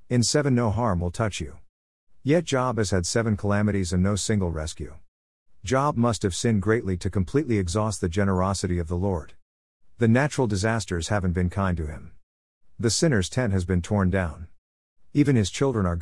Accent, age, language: American, 50-69, English